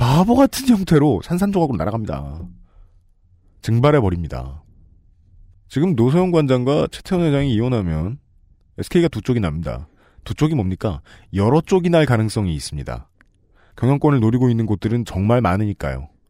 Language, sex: Korean, male